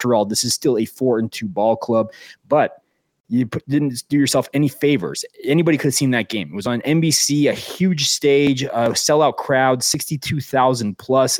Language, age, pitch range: English, 20-39, 120-140 Hz